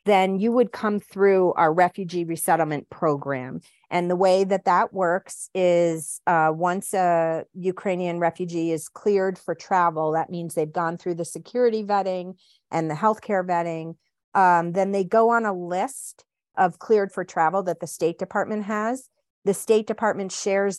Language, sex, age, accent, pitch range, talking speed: English, female, 40-59, American, 170-205 Hz, 165 wpm